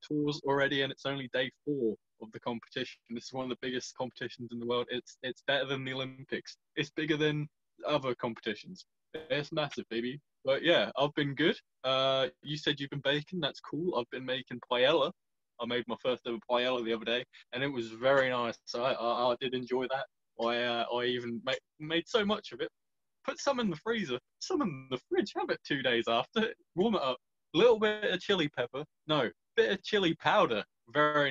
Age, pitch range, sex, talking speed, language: 20-39, 125-150 Hz, male, 210 wpm, English